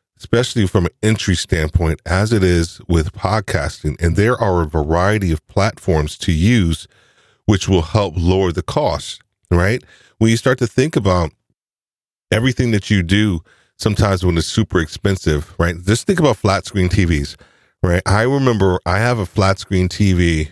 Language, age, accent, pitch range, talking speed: English, 40-59, American, 85-105 Hz, 165 wpm